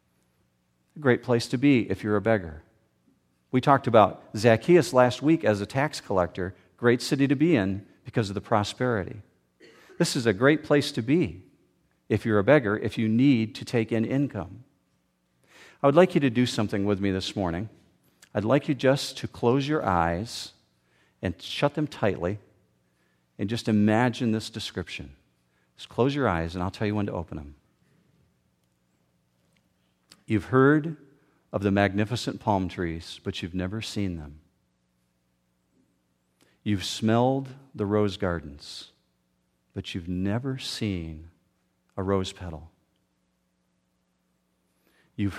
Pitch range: 70-120 Hz